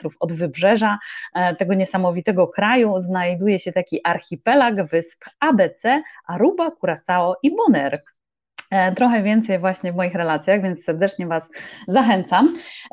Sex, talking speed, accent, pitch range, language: female, 115 wpm, native, 195-260 Hz, Polish